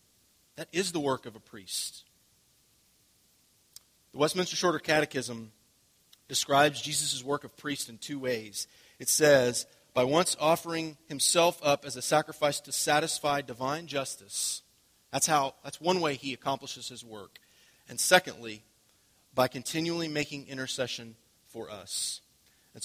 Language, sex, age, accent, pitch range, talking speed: English, male, 30-49, American, 120-160 Hz, 135 wpm